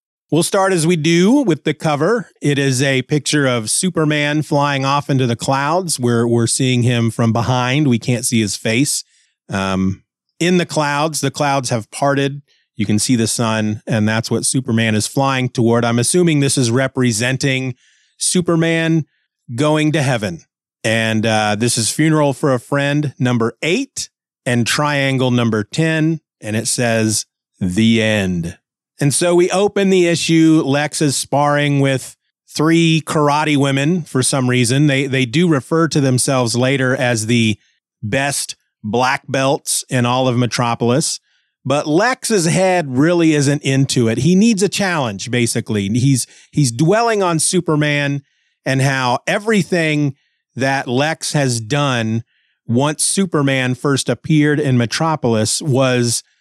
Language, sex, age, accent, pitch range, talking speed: English, male, 30-49, American, 120-155 Hz, 150 wpm